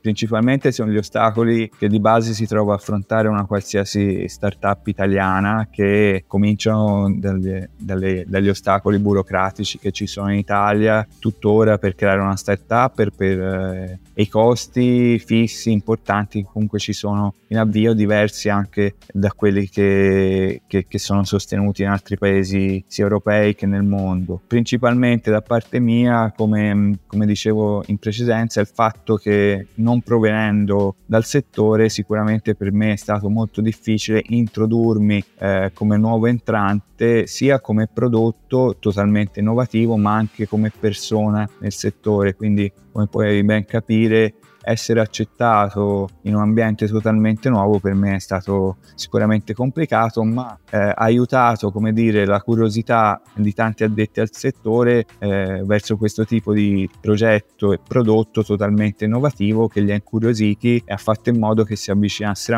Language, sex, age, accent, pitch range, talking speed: Italian, male, 20-39, native, 100-110 Hz, 145 wpm